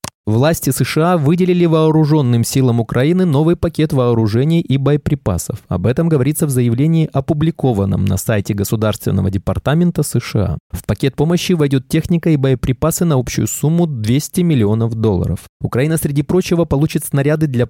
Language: Russian